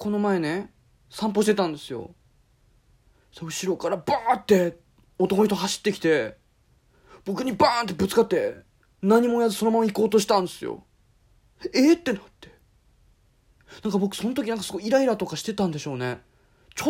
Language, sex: Japanese, male